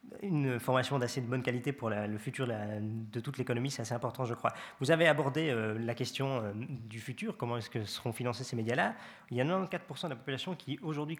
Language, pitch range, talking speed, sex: French, 115-140 Hz, 240 wpm, male